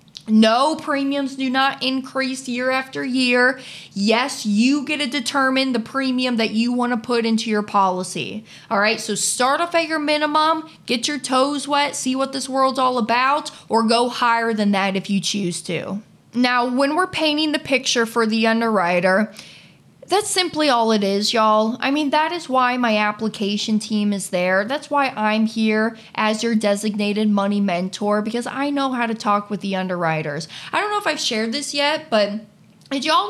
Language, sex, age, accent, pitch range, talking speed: English, female, 20-39, American, 210-270 Hz, 185 wpm